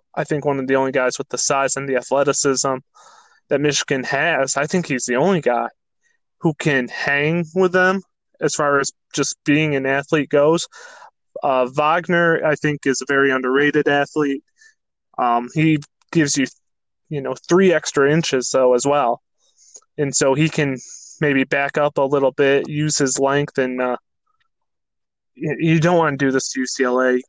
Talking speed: 175 wpm